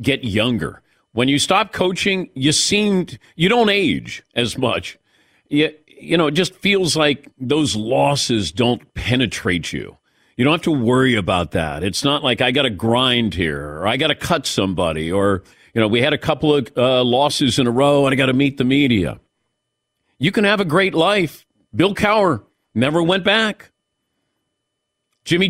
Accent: American